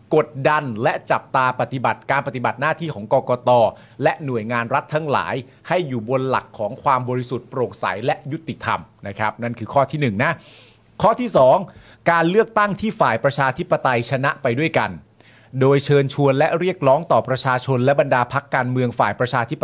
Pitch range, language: 120-150 Hz, Thai